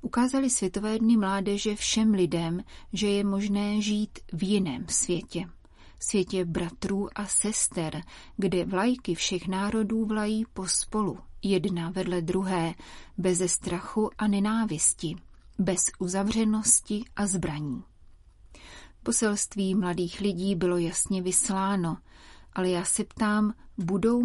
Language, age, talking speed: Czech, 30-49, 115 wpm